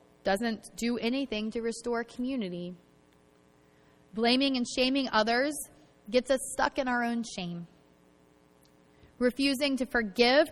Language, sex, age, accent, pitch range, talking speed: English, female, 20-39, American, 175-255 Hz, 115 wpm